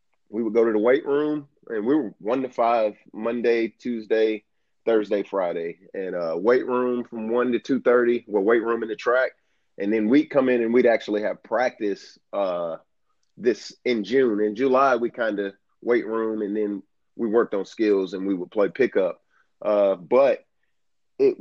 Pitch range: 110-130 Hz